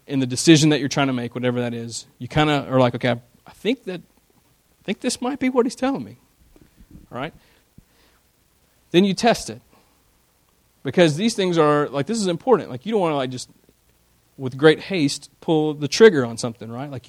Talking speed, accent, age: 210 wpm, American, 40-59